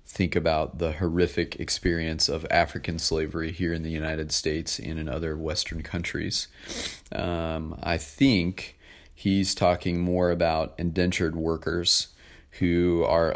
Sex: male